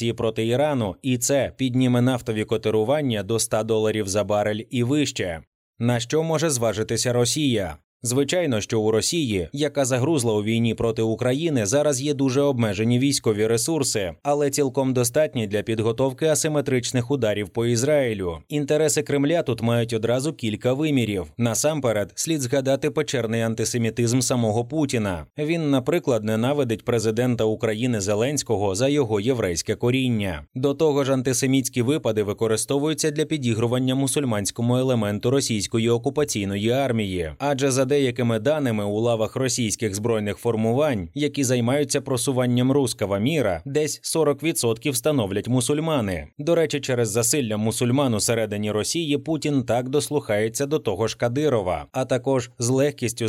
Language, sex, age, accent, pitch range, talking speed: Ukrainian, male, 20-39, native, 110-145 Hz, 130 wpm